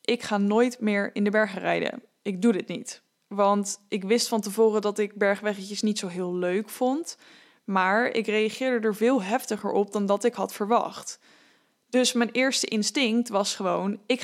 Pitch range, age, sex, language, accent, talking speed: 205-250 Hz, 10-29, female, English, Dutch, 185 wpm